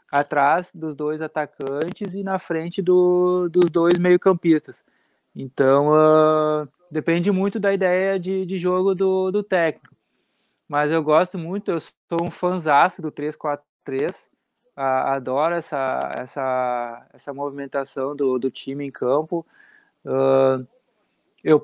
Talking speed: 115 wpm